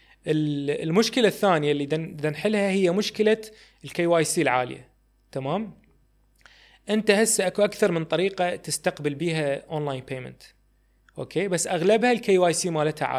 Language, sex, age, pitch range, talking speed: Arabic, male, 20-39, 150-195 Hz, 125 wpm